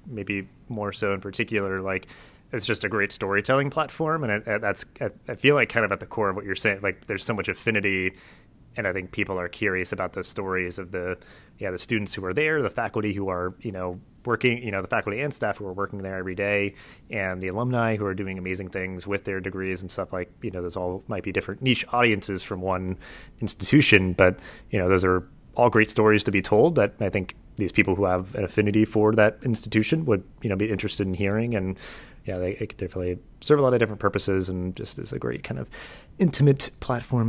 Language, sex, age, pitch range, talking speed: English, male, 30-49, 95-110 Hz, 230 wpm